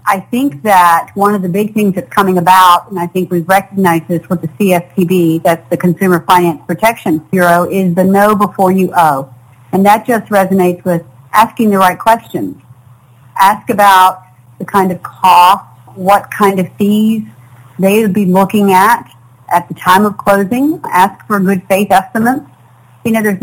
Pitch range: 175-210 Hz